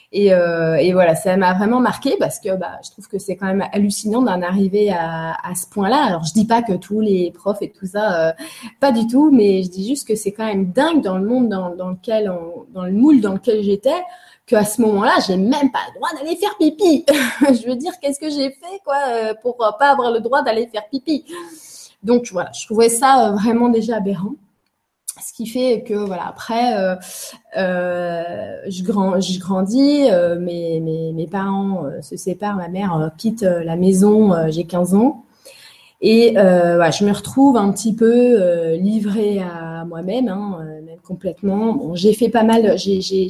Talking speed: 200 wpm